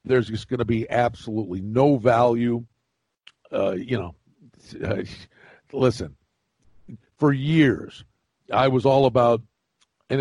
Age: 50-69